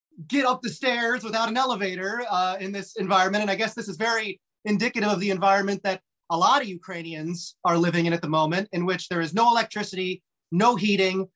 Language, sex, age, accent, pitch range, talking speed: English, male, 30-49, American, 175-225 Hz, 210 wpm